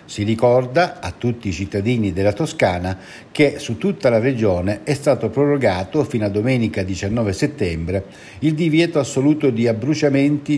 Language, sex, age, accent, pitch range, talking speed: Italian, male, 60-79, native, 105-135 Hz, 145 wpm